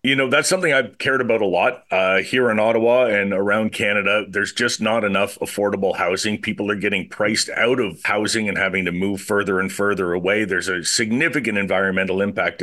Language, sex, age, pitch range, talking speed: English, male, 40-59, 100-125 Hz, 200 wpm